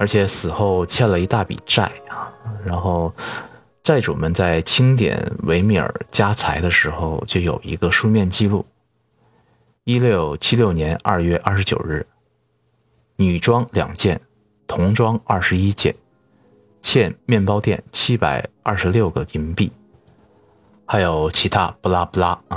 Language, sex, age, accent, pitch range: Chinese, male, 20-39, native, 85-115 Hz